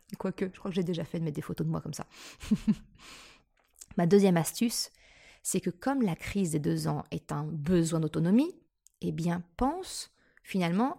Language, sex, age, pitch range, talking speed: French, female, 20-39, 175-230 Hz, 185 wpm